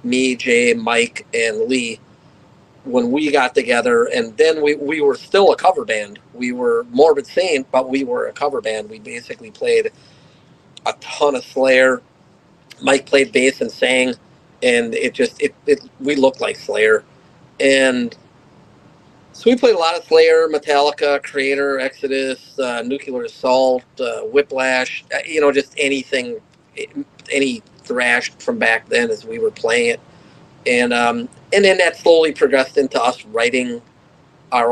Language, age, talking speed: English, 40-59, 155 wpm